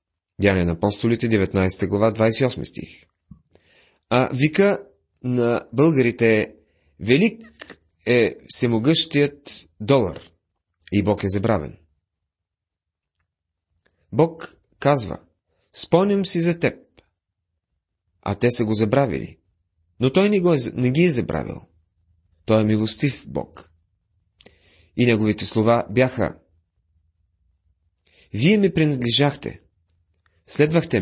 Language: Bulgarian